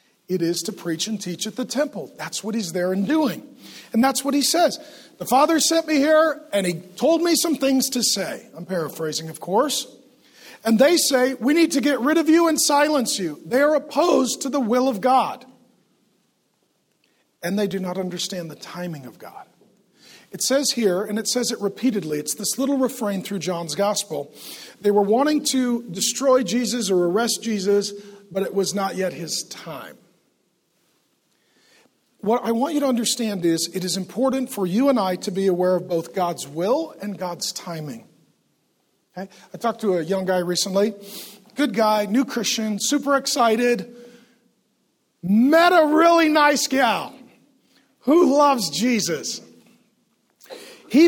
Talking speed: 170 wpm